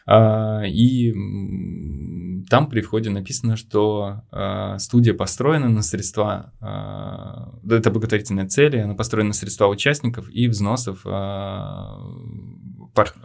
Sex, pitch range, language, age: male, 100-120 Hz, Russian, 20-39